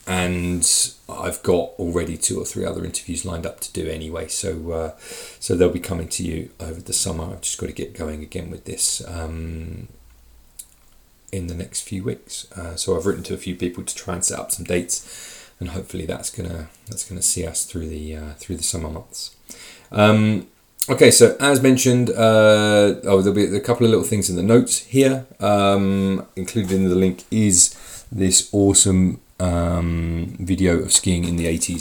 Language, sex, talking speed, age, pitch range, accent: English, male, 190 wpm, 30-49, 85-100 Hz, British